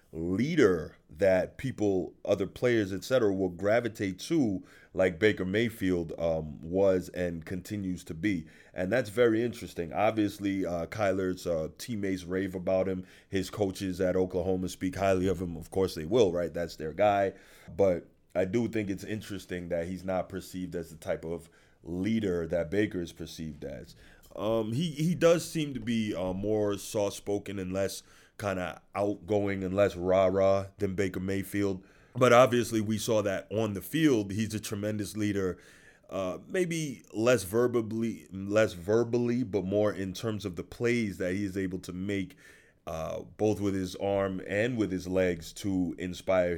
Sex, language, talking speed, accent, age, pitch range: male, English, 165 wpm, American, 30-49, 90-105 Hz